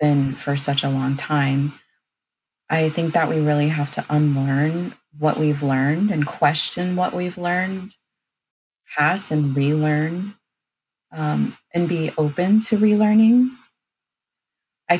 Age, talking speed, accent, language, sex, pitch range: 30-49, 130 wpm, American, English, female, 145-170 Hz